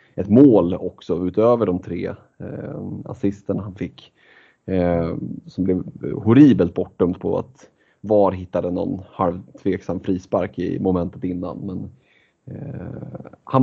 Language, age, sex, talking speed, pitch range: Swedish, 30-49, male, 130 wpm, 90-110 Hz